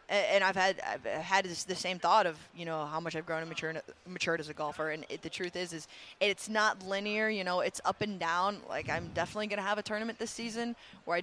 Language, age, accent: English, 20-39, American